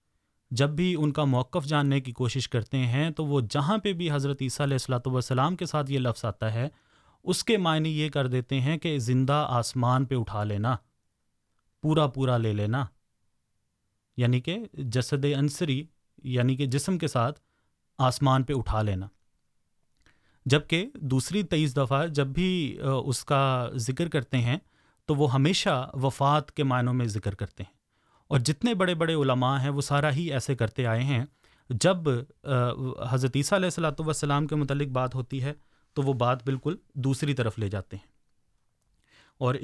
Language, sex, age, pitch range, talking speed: Urdu, male, 30-49, 125-145 Hz, 165 wpm